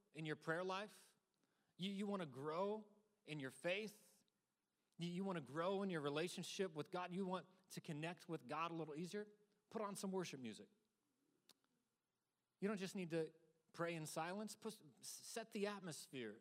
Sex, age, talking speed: male, 30-49, 165 wpm